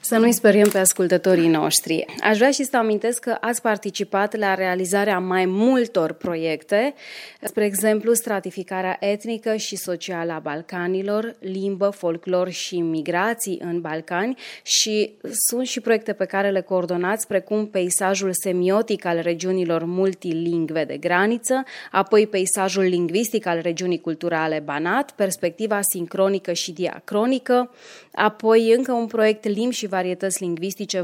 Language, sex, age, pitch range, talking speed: Romanian, female, 20-39, 180-215 Hz, 130 wpm